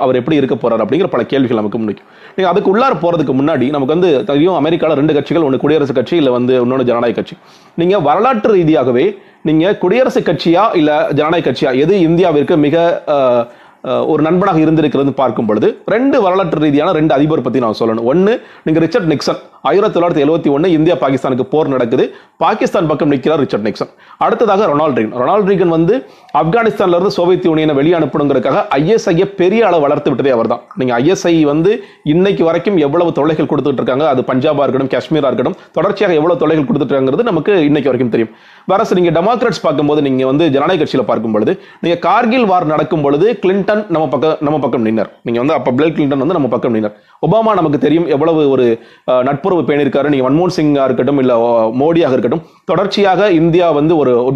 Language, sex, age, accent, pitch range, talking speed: Tamil, male, 30-49, native, 140-180 Hz, 60 wpm